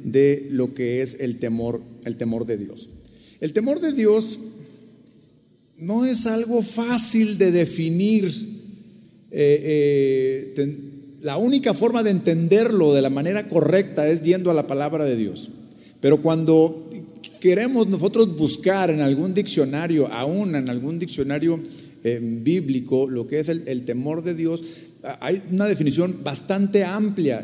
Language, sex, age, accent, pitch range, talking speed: Spanish, male, 40-59, Mexican, 140-200 Hz, 140 wpm